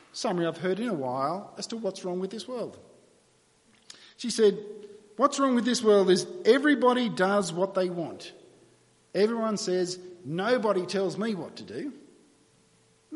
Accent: Australian